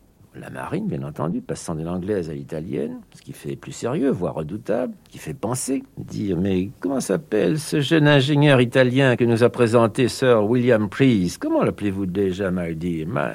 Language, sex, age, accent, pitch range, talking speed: French, male, 60-79, French, 85-130 Hz, 180 wpm